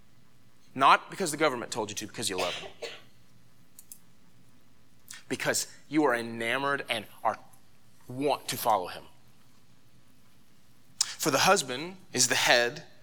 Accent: American